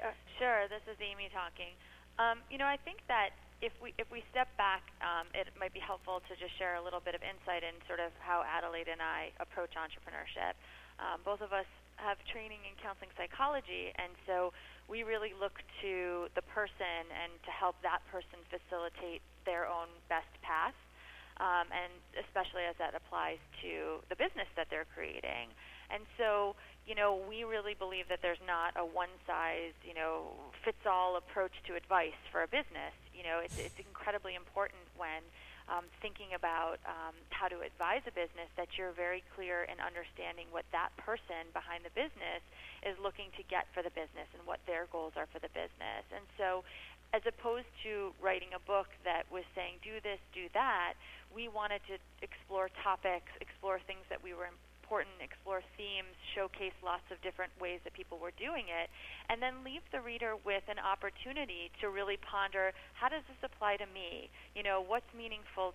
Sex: female